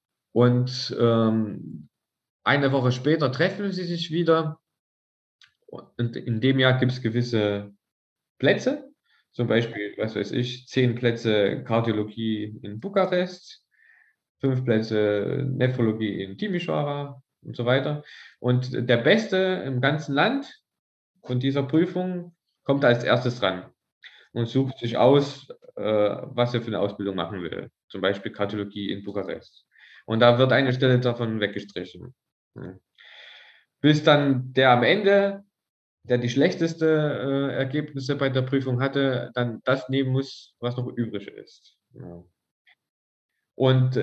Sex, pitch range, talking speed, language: male, 110-145 Hz, 130 wpm, German